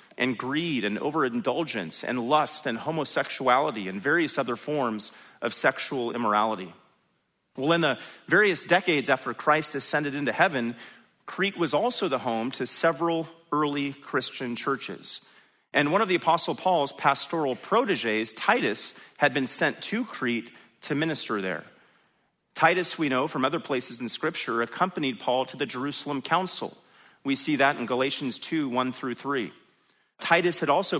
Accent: American